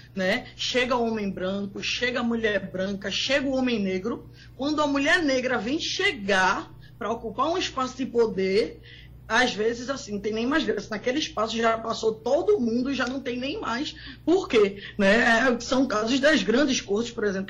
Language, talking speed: Portuguese, 190 wpm